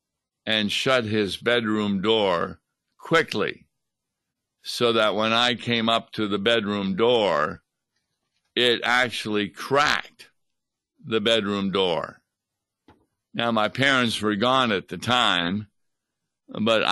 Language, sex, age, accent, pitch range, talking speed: English, male, 60-79, American, 100-120 Hz, 110 wpm